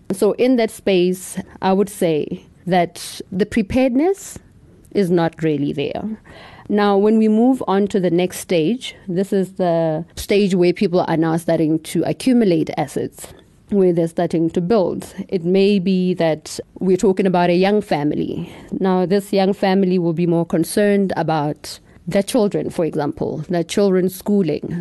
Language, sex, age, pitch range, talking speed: English, female, 30-49, 170-195 Hz, 160 wpm